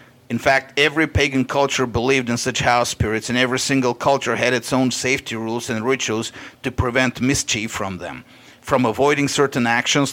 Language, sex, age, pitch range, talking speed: English, male, 50-69, 115-130 Hz, 180 wpm